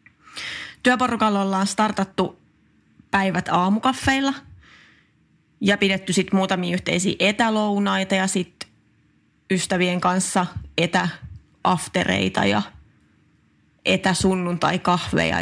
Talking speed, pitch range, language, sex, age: 75 wpm, 175-205 Hz, Finnish, female, 30-49